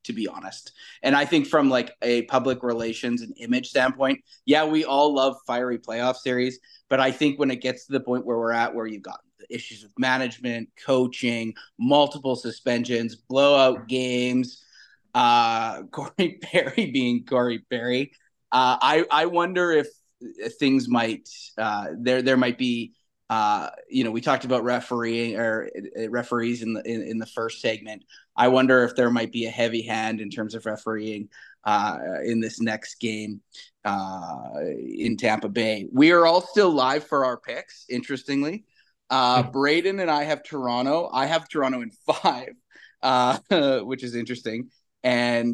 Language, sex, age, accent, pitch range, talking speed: English, male, 30-49, American, 115-135 Hz, 165 wpm